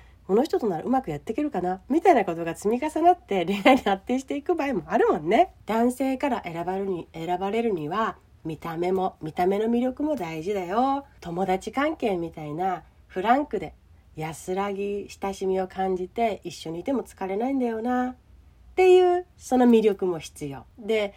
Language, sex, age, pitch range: Japanese, female, 40-59, 170-240 Hz